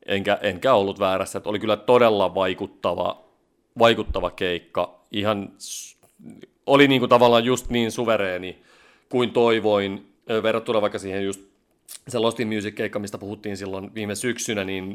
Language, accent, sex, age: Finnish, native, male, 30-49